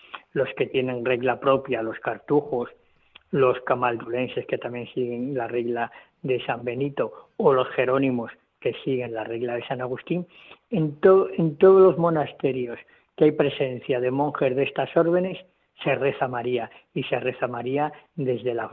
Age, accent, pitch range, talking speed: 40-59, Spanish, 130-160 Hz, 155 wpm